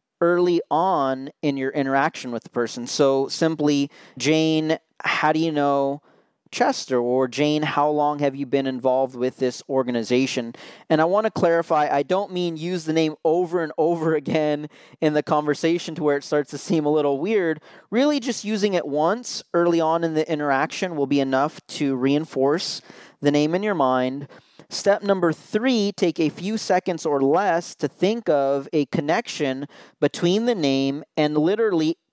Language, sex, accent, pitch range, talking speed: English, male, American, 140-170 Hz, 175 wpm